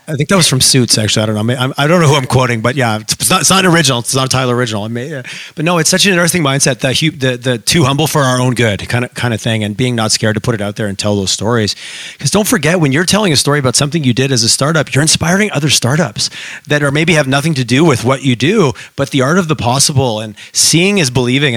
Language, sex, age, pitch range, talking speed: English, male, 30-49, 120-155 Hz, 290 wpm